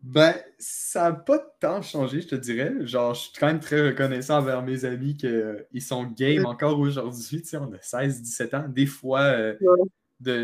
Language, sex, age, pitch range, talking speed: English, male, 20-39, 115-140 Hz, 200 wpm